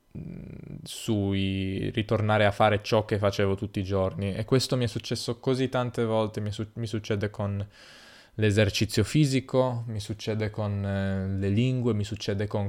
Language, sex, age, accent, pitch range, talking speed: Italian, male, 10-29, native, 105-125 Hz, 155 wpm